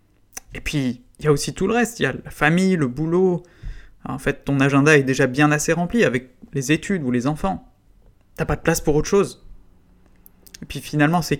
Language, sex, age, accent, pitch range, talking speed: French, male, 20-39, French, 125-170 Hz, 220 wpm